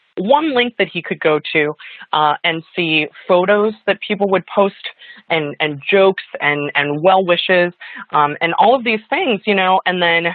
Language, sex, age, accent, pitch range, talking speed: English, female, 20-39, American, 155-195 Hz, 185 wpm